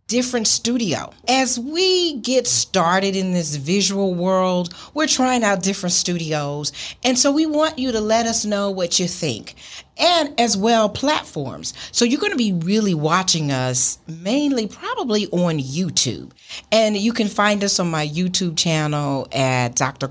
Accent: American